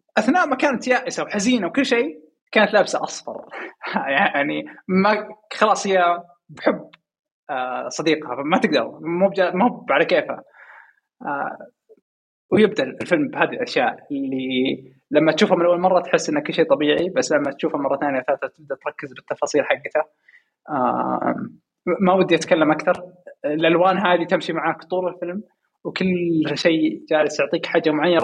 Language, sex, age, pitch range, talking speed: Arabic, male, 20-39, 150-185 Hz, 135 wpm